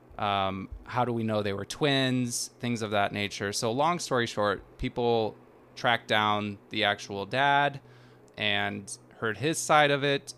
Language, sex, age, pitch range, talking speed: English, male, 20-39, 100-125 Hz, 160 wpm